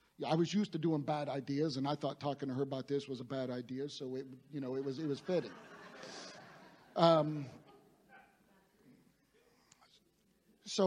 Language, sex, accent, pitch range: English, male, American, 145-170 Hz